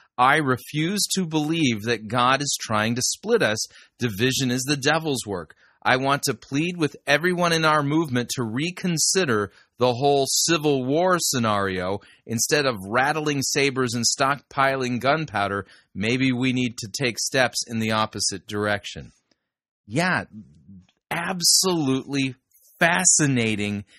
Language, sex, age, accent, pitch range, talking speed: English, male, 30-49, American, 115-145 Hz, 130 wpm